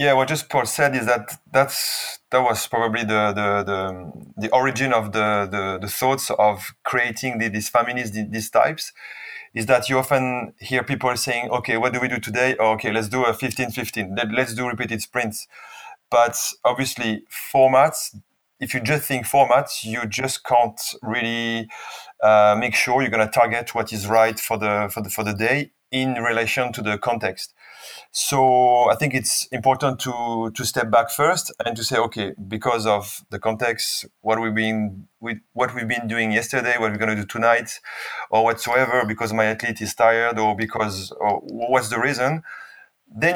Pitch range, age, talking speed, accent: 110-130 Hz, 30-49, 180 wpm, French